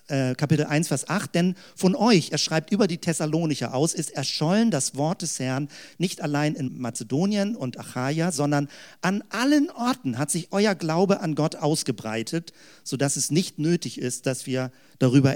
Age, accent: 50-69, German